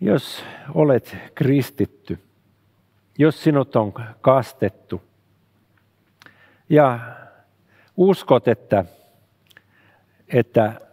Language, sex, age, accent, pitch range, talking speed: Finnish, male, 50-69, native, 100-125 Hz, 60 wpm